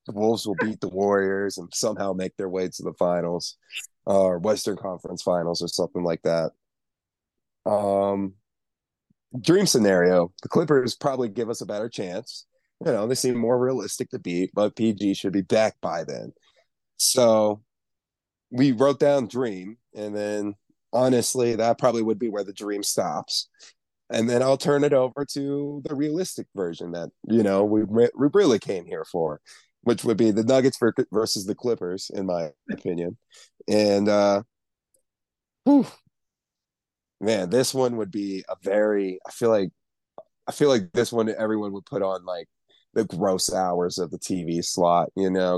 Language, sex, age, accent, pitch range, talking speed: English, male, 30-49, American, 95-120 Hz, 165 wpm